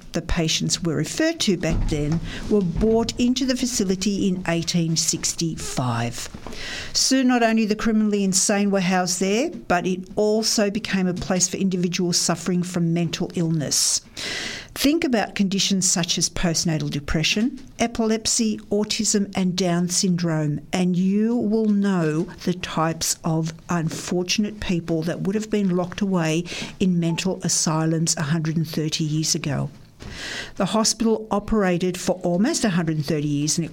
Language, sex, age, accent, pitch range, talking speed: English, female, 50-69, Australian, 170-210 Hz, 135 wpm